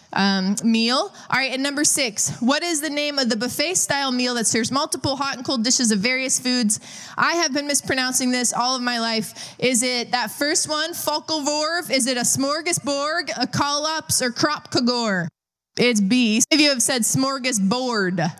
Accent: American